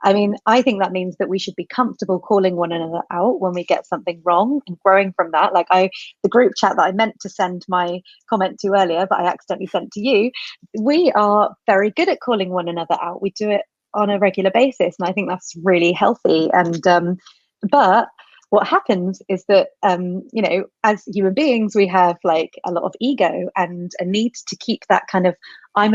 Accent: British